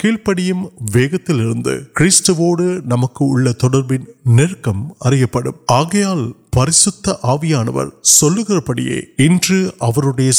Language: Urdu